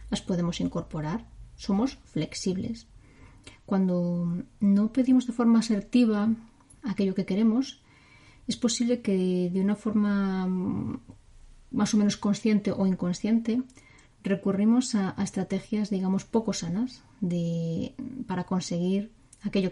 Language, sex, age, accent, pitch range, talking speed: Spanish, female, 20-39, Spanish, 185-225 Hz, 110 wpm